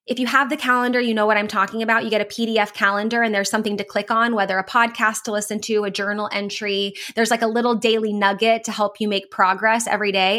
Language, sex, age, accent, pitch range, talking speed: English, female, 20-39, American, 200-230 Hz, 255 wpm